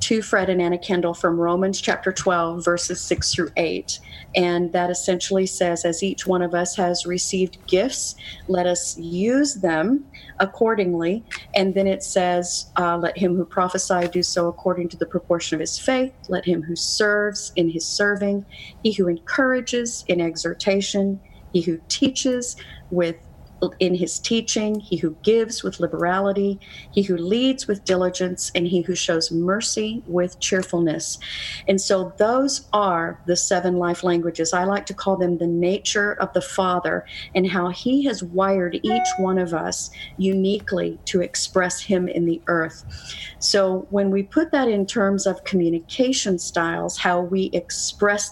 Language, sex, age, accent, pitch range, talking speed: English, female, 40-59, American, 175-200 Hz, 165 wpm